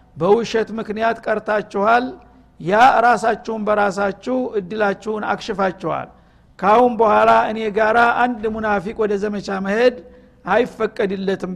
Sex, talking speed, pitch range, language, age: male, 90 wpm, 195-225 Hz, Amharic, 60-79